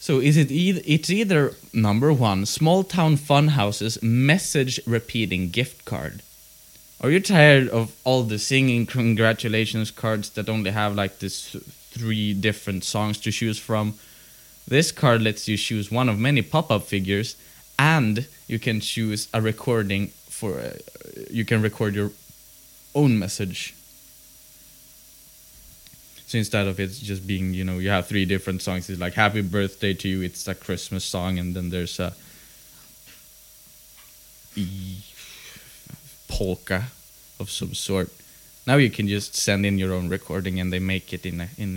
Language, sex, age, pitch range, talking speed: English, male, 20-39, 95-125 Hz, 155 wpm